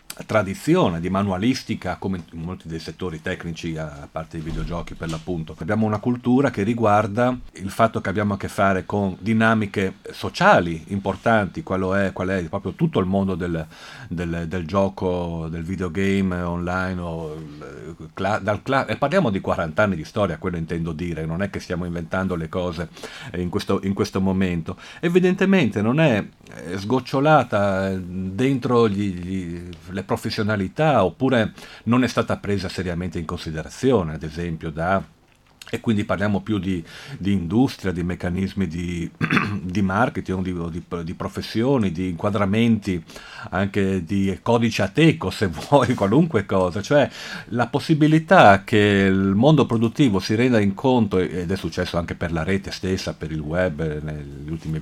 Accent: native